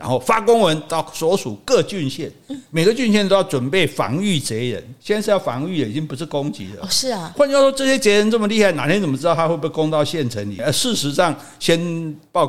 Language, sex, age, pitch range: Chinese, male, 50-69, 120-170 Hz